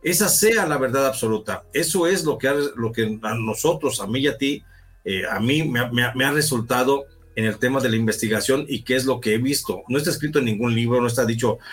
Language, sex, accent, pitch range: Spanish, male, Mexican, 115-145 Hz